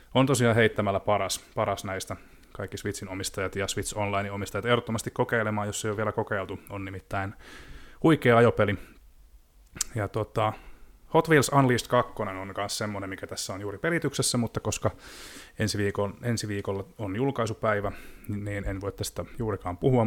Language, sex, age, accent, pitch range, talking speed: Finnish, male, 20-39, native, 100-120 Hz, 155 wpm